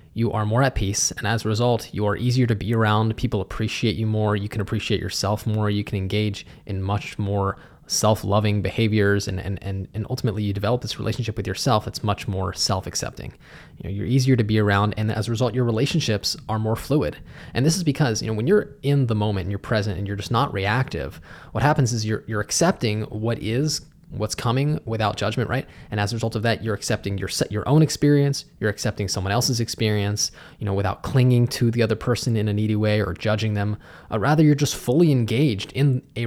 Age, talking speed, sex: 20-39, 225 wpm, male